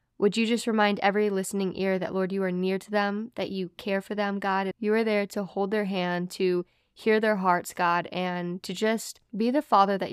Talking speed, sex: 230 wpm, female